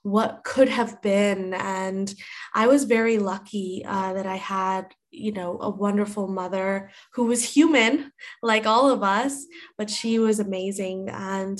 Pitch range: 195-230 Hz